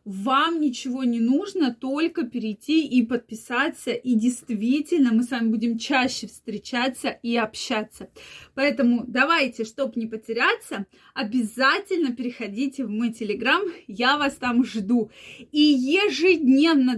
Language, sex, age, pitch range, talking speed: Russian, female, 20-39, 235-310 Hz, 120 wpm